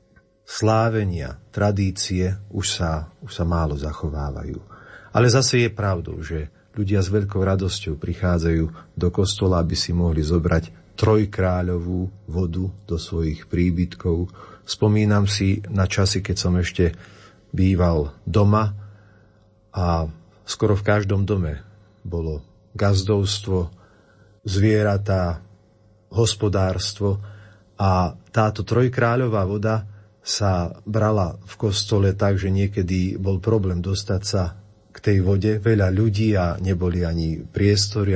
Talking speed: 110 wpm